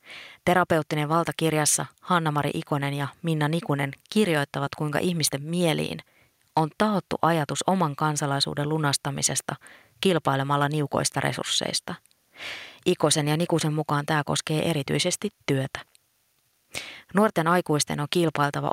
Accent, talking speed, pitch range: native, 105 wpm, 145-175 Hz